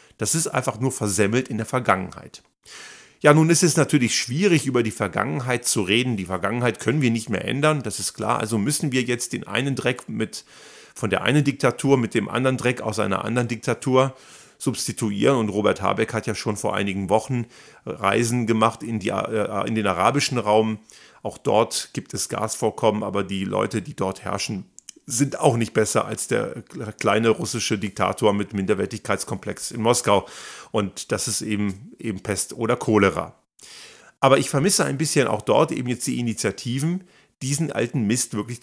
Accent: German